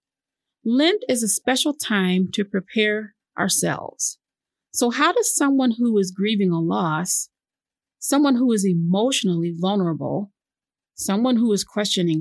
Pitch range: 190-250 Hz